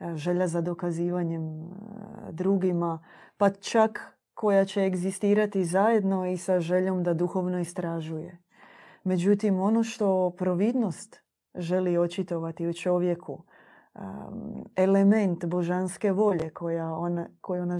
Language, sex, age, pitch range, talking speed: Croatian, female, 20-39, 170-195 Hz, 105 wpm